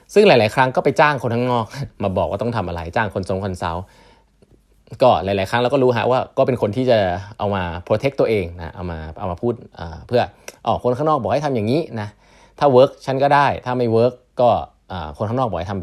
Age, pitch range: 20-39, 95-120 Hz